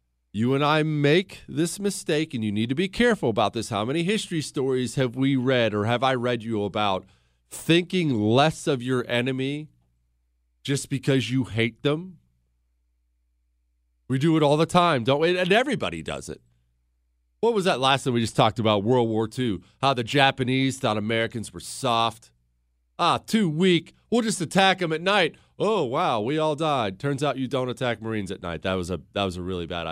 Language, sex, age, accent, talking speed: English, male, 40-59, American, 195 wpm